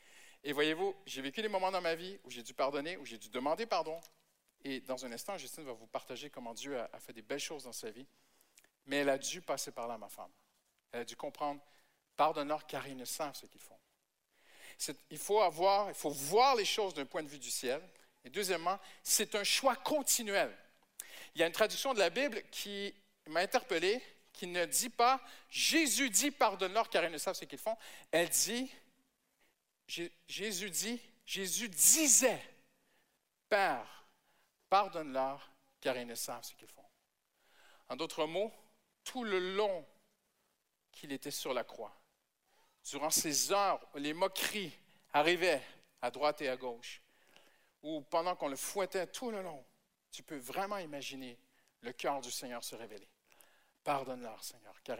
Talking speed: 180 wpm